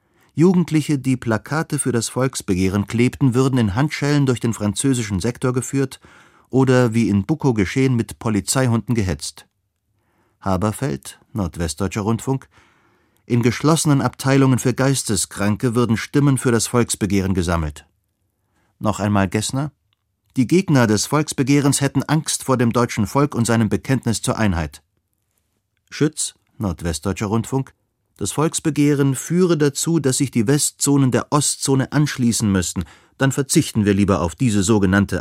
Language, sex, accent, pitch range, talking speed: German, male, German, 100-135 Hz, 130 wpm